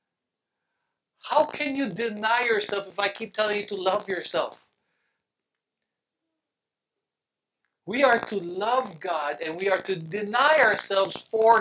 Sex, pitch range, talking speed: male, 165-240 Hz, 130 wpm